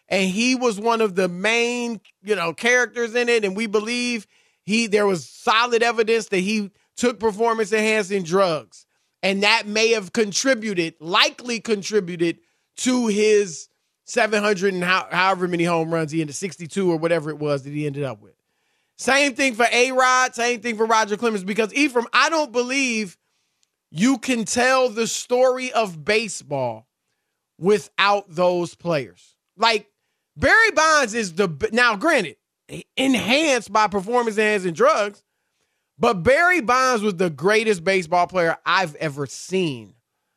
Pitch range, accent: 195-260 Hz, American